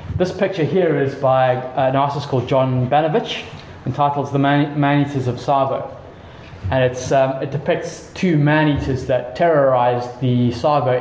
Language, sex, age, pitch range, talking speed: English, male, 20-39, 125-150 Hz, 145 wpm